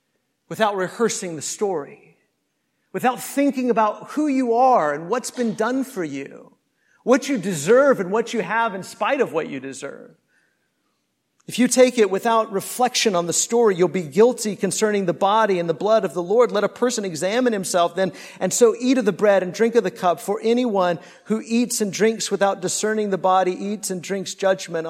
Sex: male